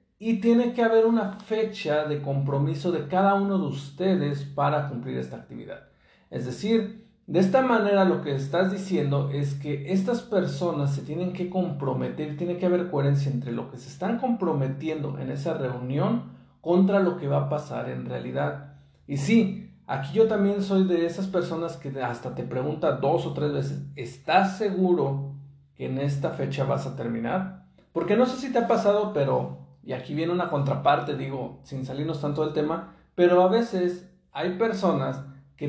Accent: Mexican